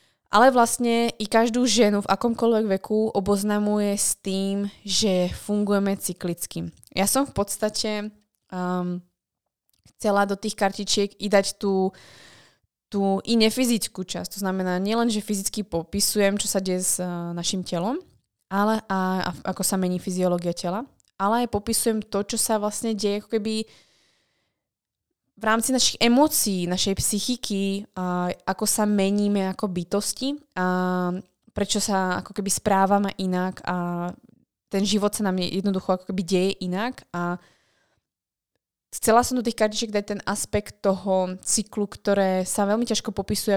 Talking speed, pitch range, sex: 145 wpm, 185-210 Hz, female